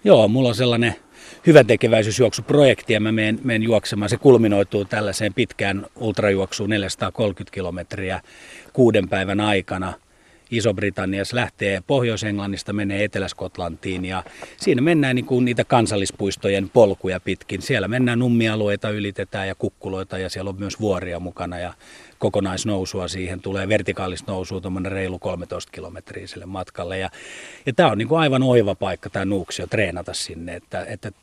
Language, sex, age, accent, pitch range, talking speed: Finnish, male, 30-49, native, 95-120 Hz, 135 wpm